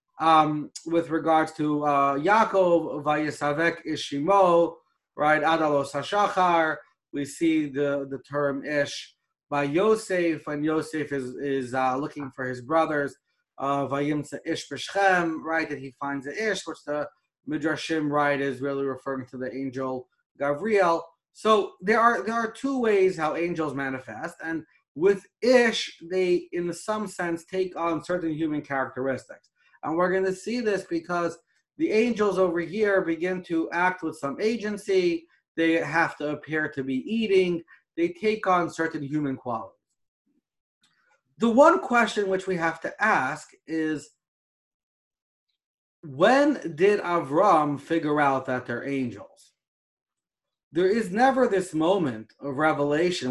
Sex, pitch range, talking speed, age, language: male, 140-185 Hz, 135 wpm, 30-49, English